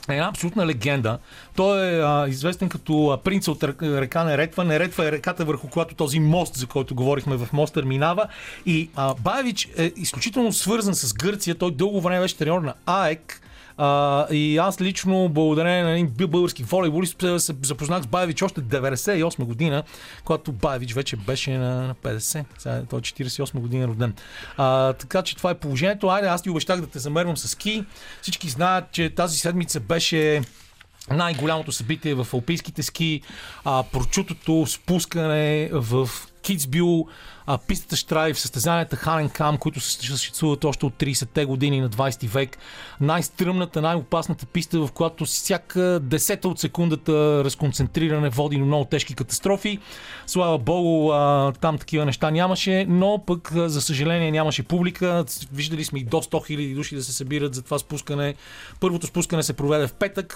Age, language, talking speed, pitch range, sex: 40-59, Bulgarian, 155 wpm, 140-175 Hz, male